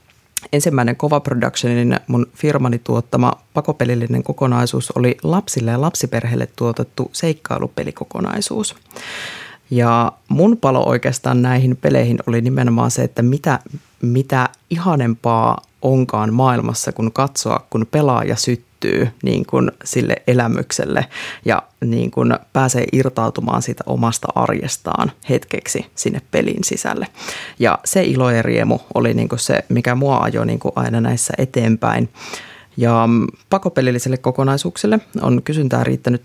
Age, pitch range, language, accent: 30-49, 115-135 Hz, Finnish, native